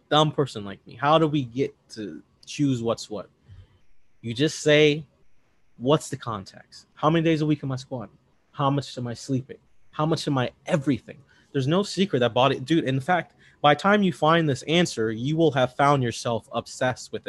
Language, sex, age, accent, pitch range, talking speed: English, male, 20-39, American, 125-160 Hz, 200 wpm